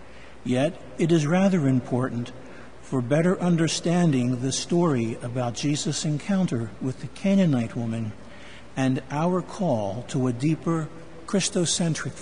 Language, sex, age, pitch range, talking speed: English, male, 60-79, 130-180 Hz, 120 wpm